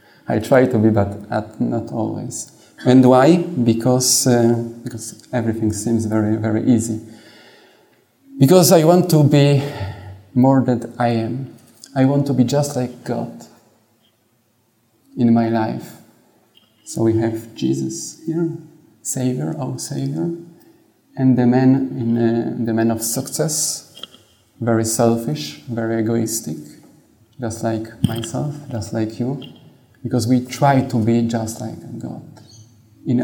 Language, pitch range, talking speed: English, 110-125 Hz, 130 wpm